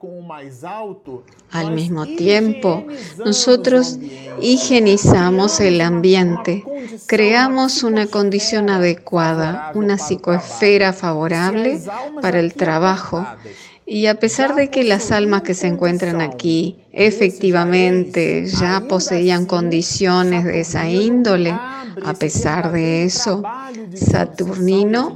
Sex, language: female, Spanish